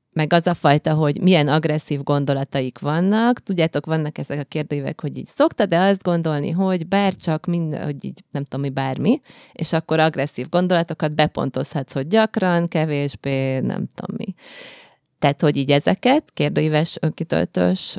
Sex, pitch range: female, 145-180 Hz